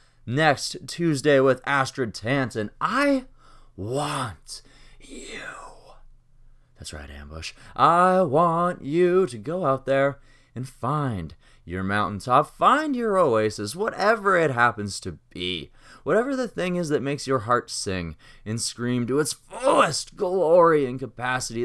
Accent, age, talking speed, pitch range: American, 20-39, 130 wpm, 115-160 Hz